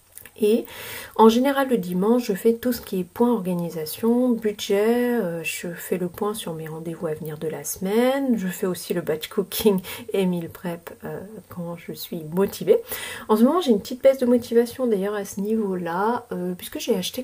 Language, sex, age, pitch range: French, female, 40-59, 185-235 Hz